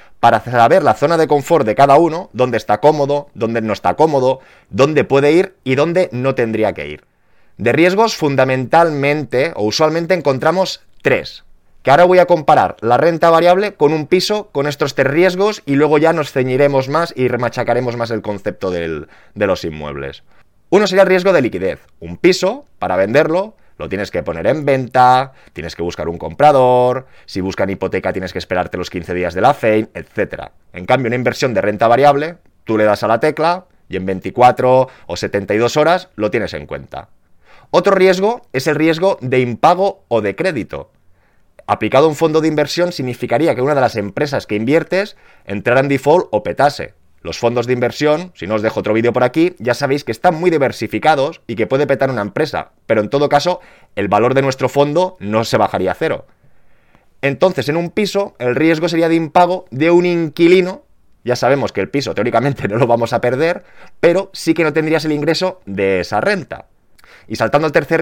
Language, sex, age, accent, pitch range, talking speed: Spanish, male, 20-39, Spanish, 115-165 Hz, 195 wpm